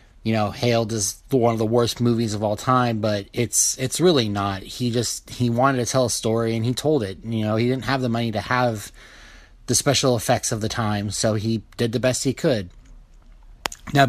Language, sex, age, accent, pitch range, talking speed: English, male, 30-49, American, 110-125 Hz, 220 wpm